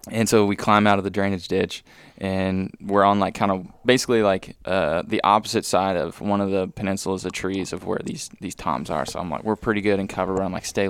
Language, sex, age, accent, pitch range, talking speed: English, male, 20-39, American, 95-105 Hz, 255 wpm